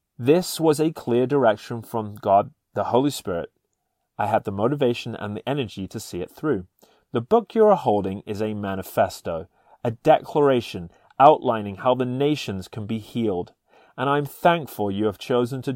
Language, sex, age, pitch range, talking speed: English, male, 30-49, 105-130 Hz, 170 wpm